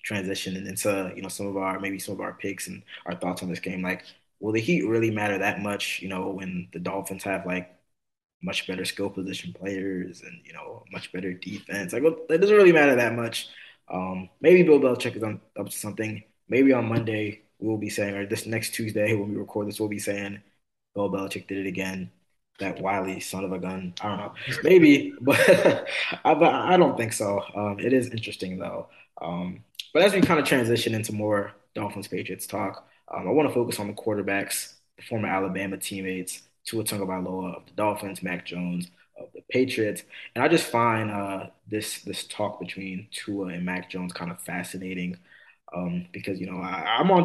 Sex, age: male, 20-39